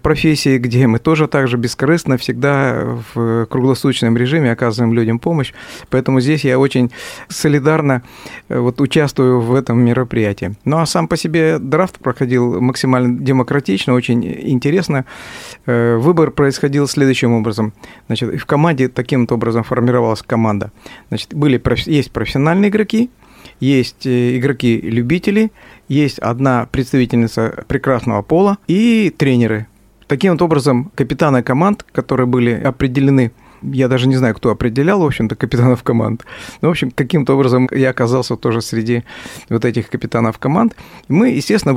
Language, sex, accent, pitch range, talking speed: Russian, male, native, 120-145 Hz, 135 wpm